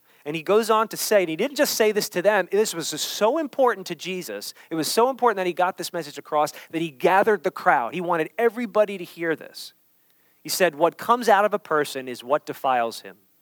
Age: 40-59